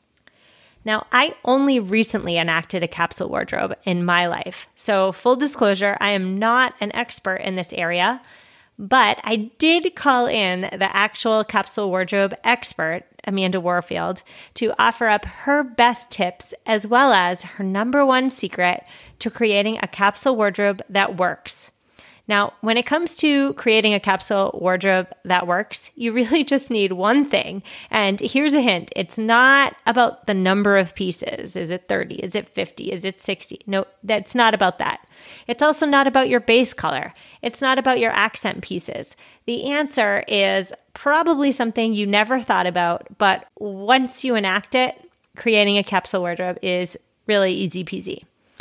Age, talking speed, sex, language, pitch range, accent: 30-49, 160 wpm, female, English, 195-250 Hz, American